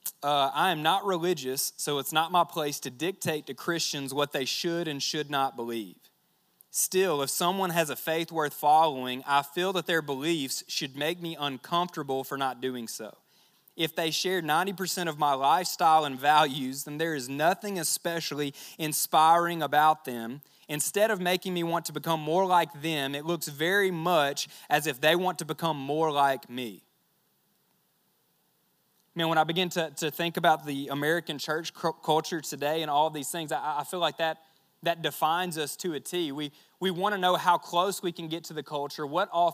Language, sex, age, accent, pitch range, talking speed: English, male, 20-39, American, 150-180 Hz, 190 wpm